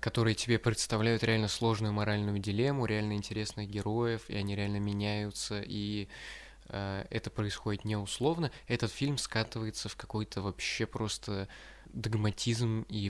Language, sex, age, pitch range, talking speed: Russian, male, 20-39, 100-115 Hz, 130 wpm